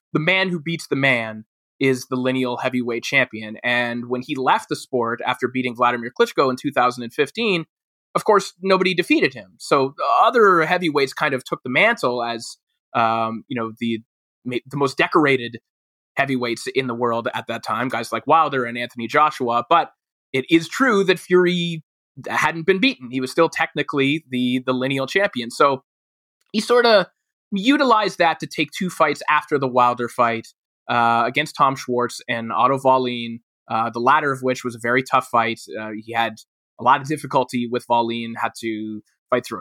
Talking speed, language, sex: 180 wpm, English, male